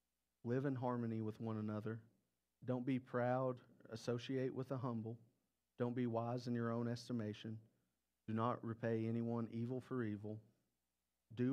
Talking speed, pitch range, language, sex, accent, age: 145 wpm, 105-120 Hz, English, male, American, 40-59